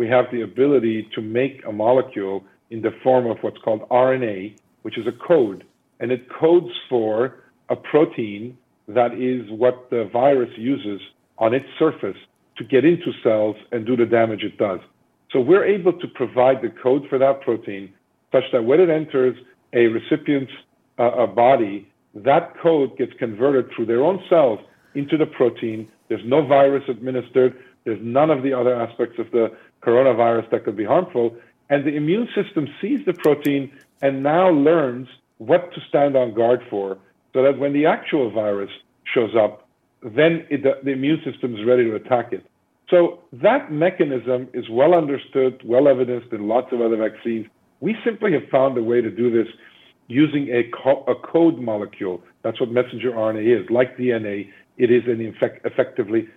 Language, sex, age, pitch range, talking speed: English, male, 50-69, 115-145 Hz, 170 wpm